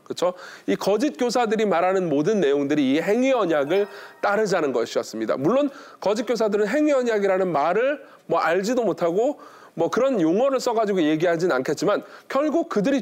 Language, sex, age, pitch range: Korean, male, 40-59, 200-295 Hz